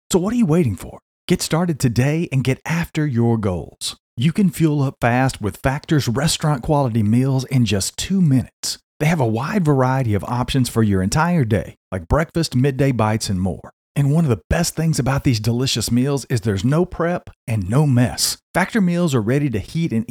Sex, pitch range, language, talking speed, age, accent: male, 115-160 Hz, English, 205 wpm, 40-59, American